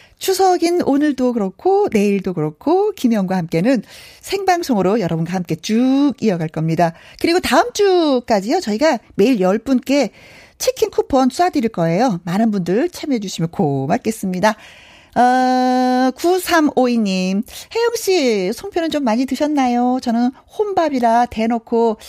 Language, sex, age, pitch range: Korean, female, 40-59, 195-280 Hz